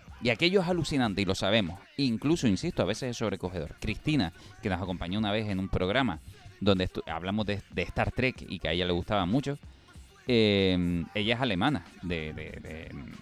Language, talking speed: Spanish, 180 wpm